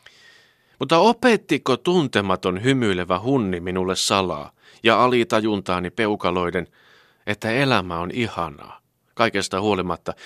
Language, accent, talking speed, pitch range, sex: Finnish, native, 95 wpm, 90-125 Hz, male